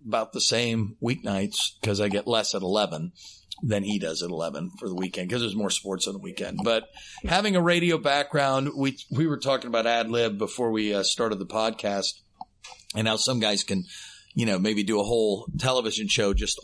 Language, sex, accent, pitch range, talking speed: English, male, American, 100-125 Hz, 205 wpm